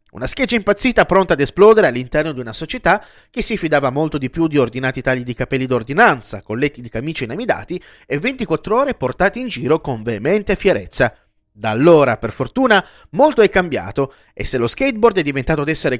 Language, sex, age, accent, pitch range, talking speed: Italian, male, 30-49, native, 130-215 Hz, 190 wpm